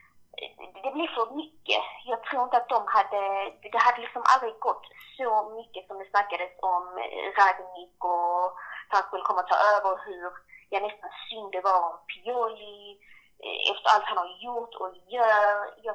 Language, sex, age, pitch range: Swedish, female, 20-39, 180-210 Hz